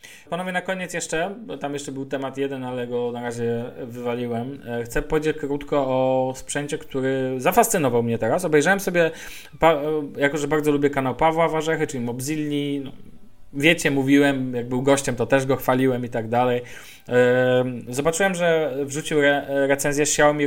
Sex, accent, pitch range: male, native, 125-165 Hz